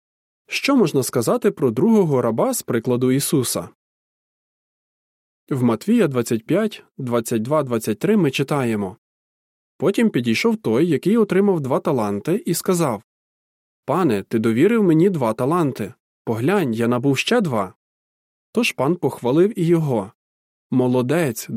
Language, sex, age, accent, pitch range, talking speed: Ukrainian, male, 20-39, native, 120-200 Hz, 115 wpm